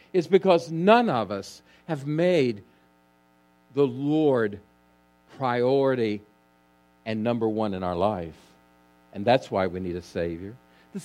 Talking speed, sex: 130 wpm, male